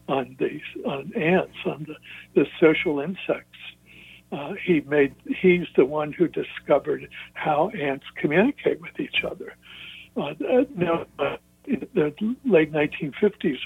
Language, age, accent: English, 60-79, American